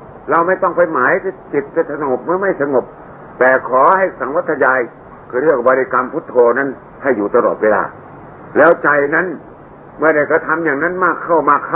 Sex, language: male, Thai